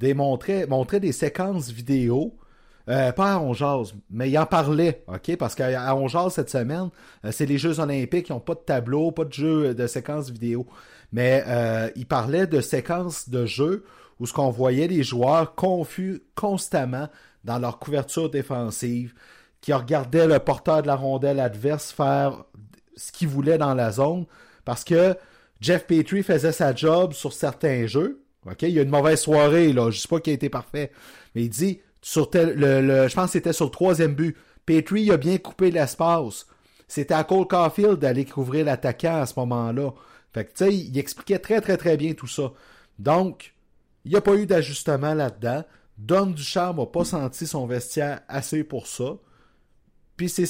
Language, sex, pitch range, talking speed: French, male, 130-170 Hz, 190 wpm